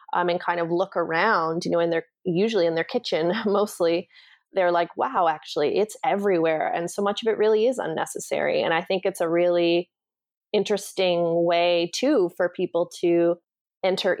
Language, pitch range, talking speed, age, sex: English, 165-195 Hz, 175 wpm, 20-39, female